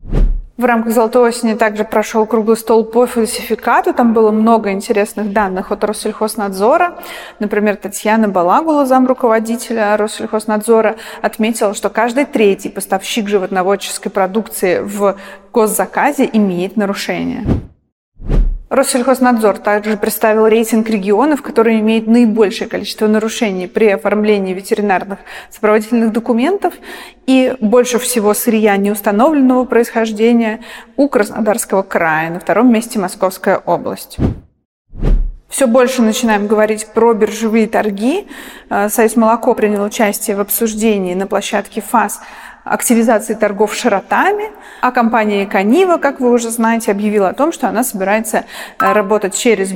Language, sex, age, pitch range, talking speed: Russian, female, 30-49, 205-235 Hz, 115 wpm